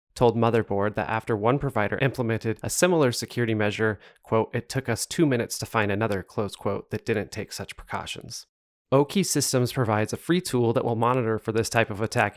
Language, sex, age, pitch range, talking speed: English, male, 20-39, 110-125 Hz, 200 wpm